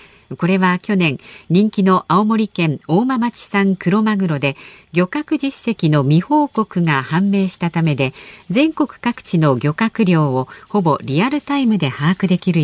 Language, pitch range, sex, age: Japanese, 155-230 Hz, female, 50-69